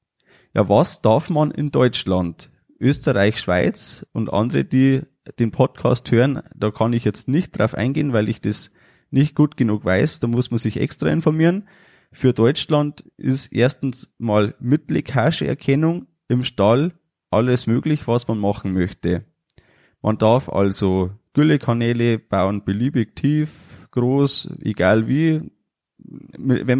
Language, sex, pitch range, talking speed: German, male, 105-145 Hz, 135 wpm